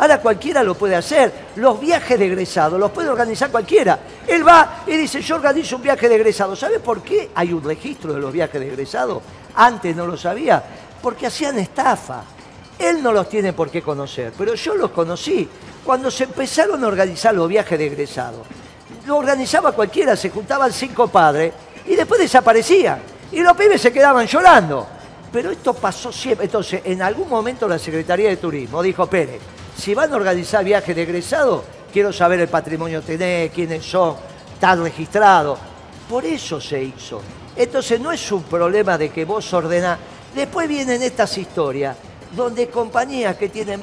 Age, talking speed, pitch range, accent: 50-69, 175 wpm, 175-265 Hz, Argentinian